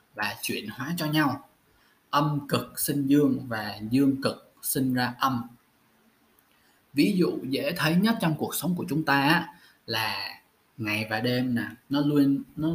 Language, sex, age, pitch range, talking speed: Vietnamese, male, 20-39, 115-175 Hz, 160 wpm